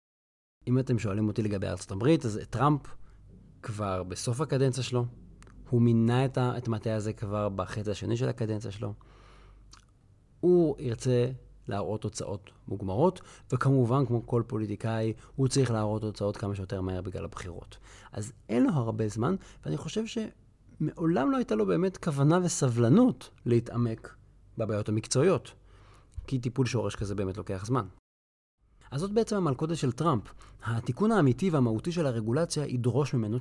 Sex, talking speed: male, 140 wpm